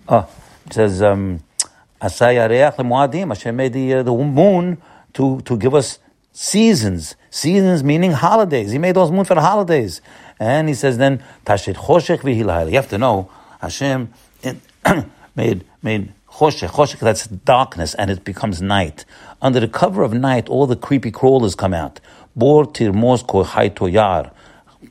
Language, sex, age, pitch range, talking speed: English, male, 60-79, 95-135 Hz, 135 wpm